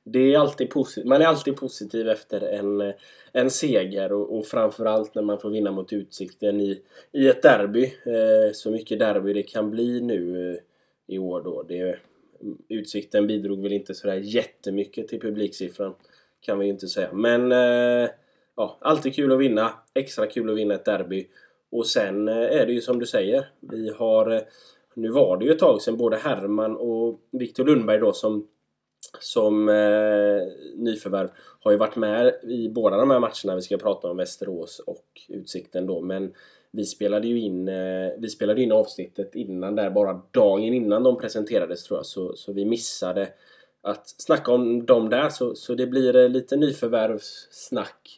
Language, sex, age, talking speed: Swedish, male, 10-29, 180 wpm